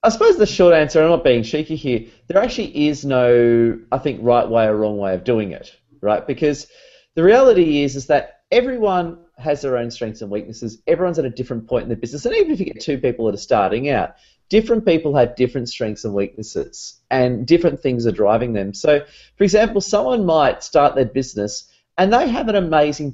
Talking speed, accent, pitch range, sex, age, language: 215 wpm, Australian, 115-175 Hz, male, 30-49, English